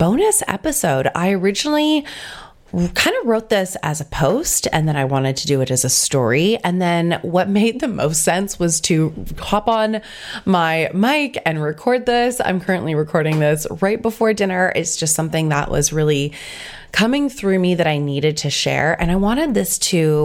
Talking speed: 185 wpm